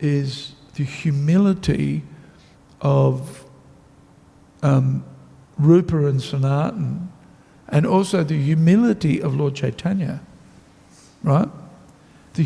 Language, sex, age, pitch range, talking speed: English, male, 60-79, 140-170 Hz, 80 wpm